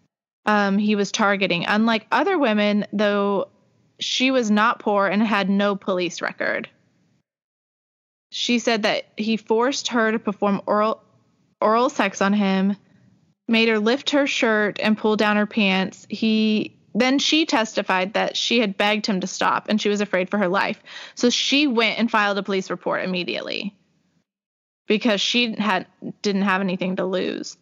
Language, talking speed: English, 165 wpm